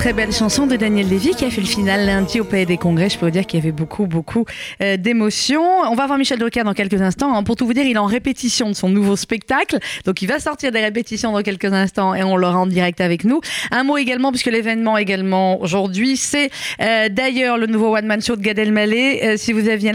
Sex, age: female, 30-49